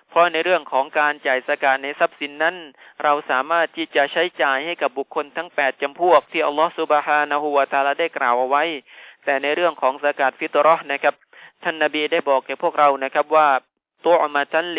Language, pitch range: Thai, 140-165 Hz